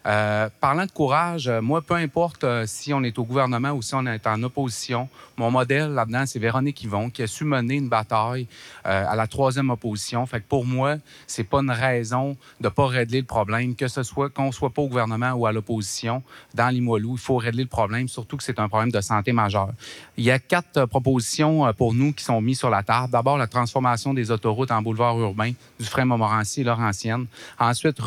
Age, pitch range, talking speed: 30-49, 115-135 Hz, 230 wpm